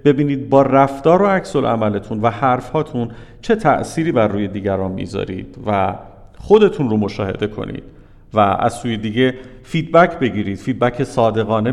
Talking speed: 145 wpm